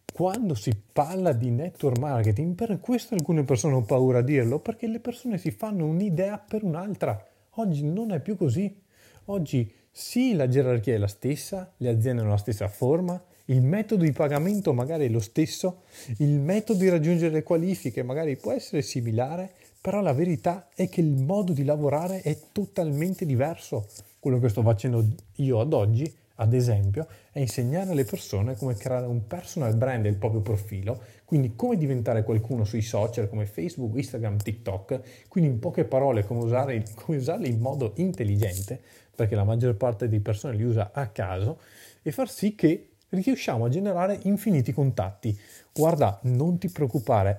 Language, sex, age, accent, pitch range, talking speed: Italian, male, 30-49, native, 115-170 Hz, 170 wpm